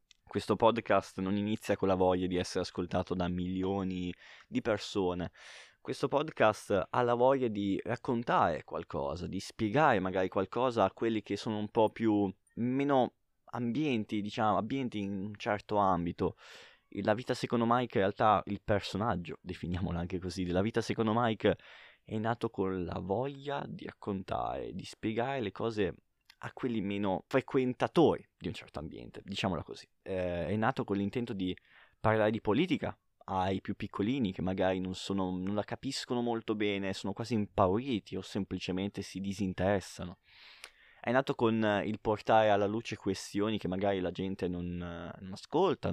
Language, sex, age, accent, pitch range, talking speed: Italian, male, 20-39, native, 90-115 Hz, 155 wpm